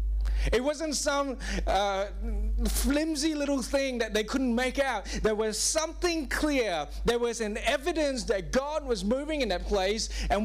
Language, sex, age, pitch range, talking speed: English, male, 30-49, 195-270 Hz, 160 wpm